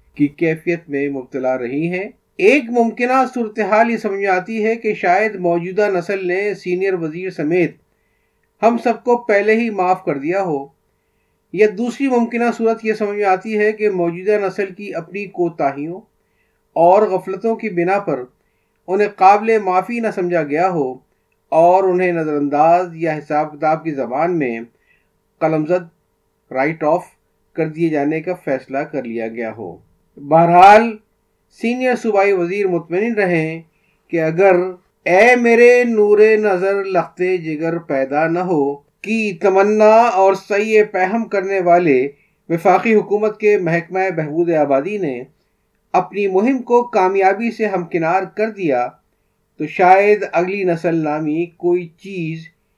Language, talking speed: Urdu, 145 wpm